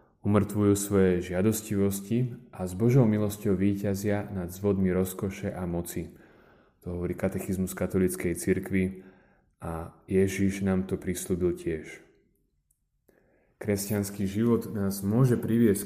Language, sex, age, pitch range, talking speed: Slovak, male, 30-49, 95-110 Hz, 110 wpm